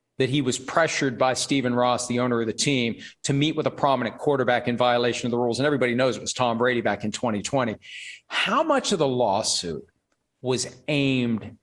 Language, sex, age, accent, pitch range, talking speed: English, male, 40-59, American, 130-170 Hz, 205 wpm